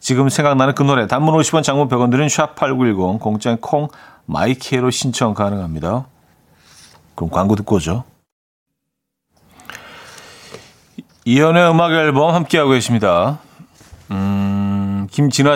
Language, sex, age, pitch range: Korean, male, 40-59, 105-155 Hz